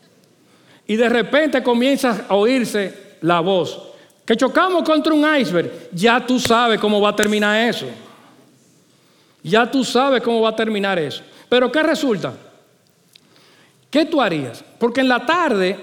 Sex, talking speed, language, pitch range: male, 150 wpm, Spanish, 210-270 Hz